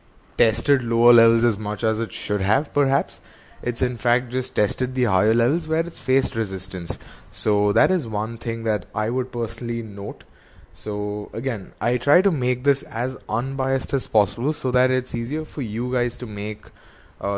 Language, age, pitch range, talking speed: English, 20-39, 100-125 Hz, 185 wpm